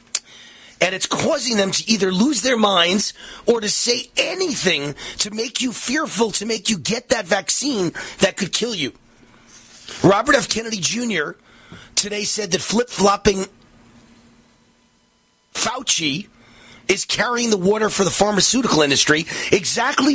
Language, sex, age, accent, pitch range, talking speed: English, male, 30-49, American, 165-235 Hz, 135 wpm